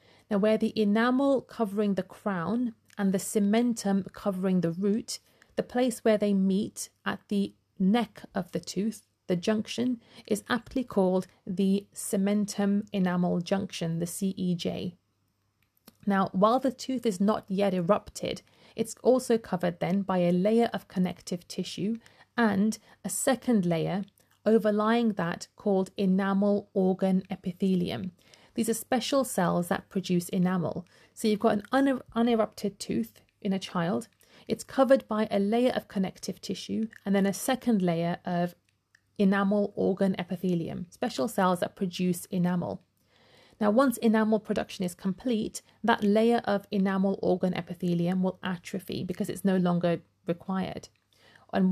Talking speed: 140 wpm